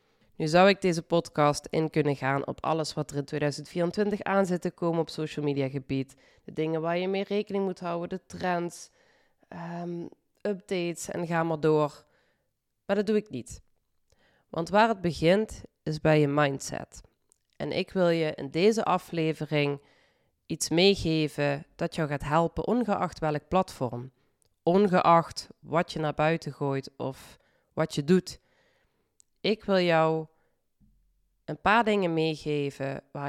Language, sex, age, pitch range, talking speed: Dutch, female, 20-39, 140-175 Hz, 150 wpm